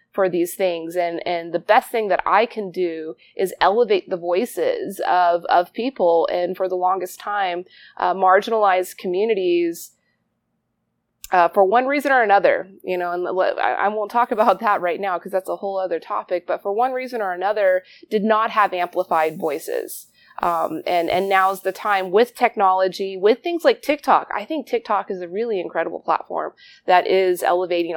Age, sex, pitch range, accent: 20-39, female, 175-230 Hz, American